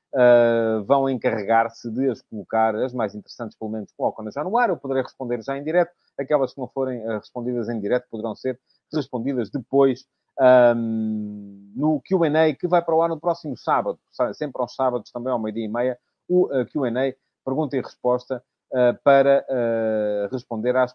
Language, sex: English, male